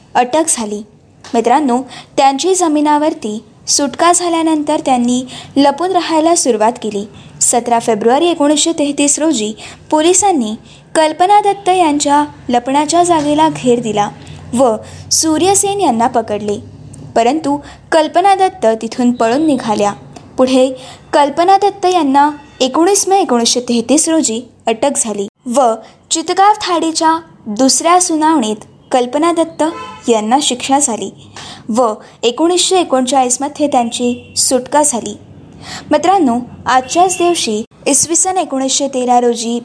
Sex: female